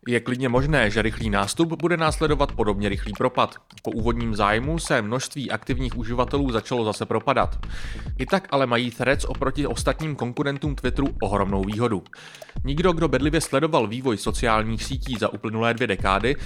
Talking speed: 155 wpm